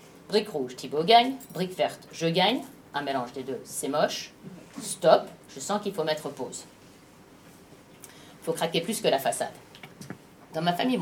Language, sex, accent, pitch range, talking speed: French, female, French, 150-200 Hz, 170 wpm